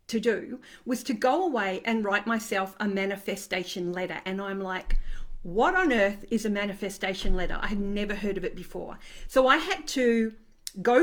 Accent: Australian